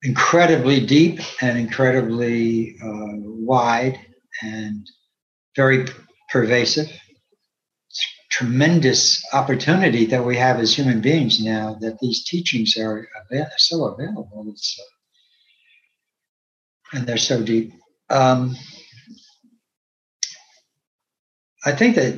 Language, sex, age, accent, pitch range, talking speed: English, male, 60-79, American, 115-145 Hz, 85 wpm